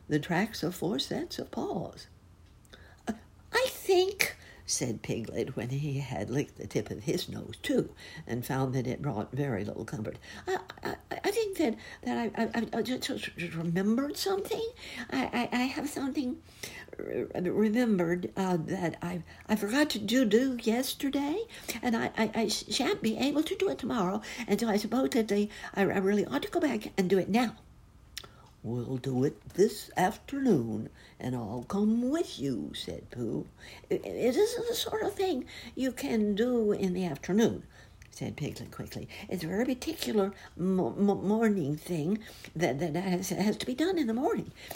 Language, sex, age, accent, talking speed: English, female, 60-79, American, 170 wpm